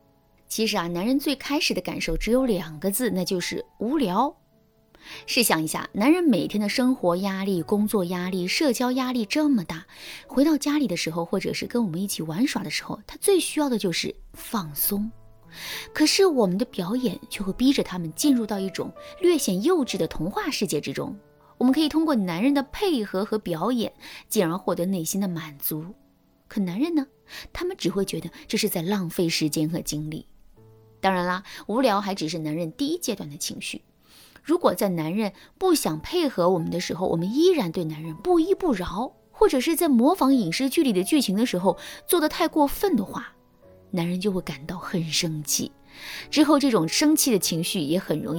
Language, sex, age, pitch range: Chinese, female, 20-39, 170-275 Hz